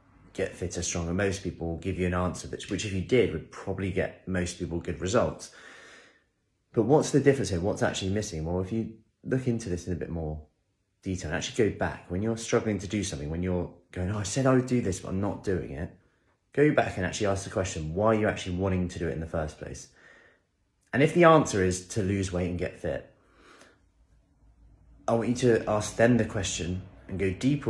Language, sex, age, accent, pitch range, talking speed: English, male, 30-49, British, 90-110 Hz, 230 wpm